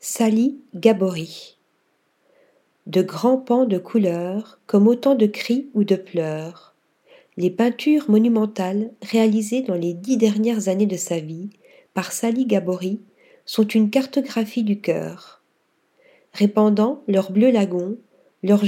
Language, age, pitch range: French, 50-69, 195-240 Hz